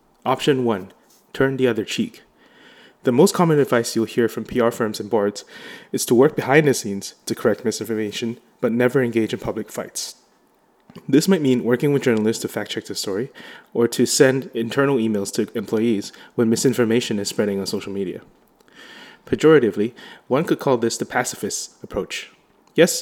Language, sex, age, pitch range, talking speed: English, male, 20-39, 110-130 Hz, 170 wpm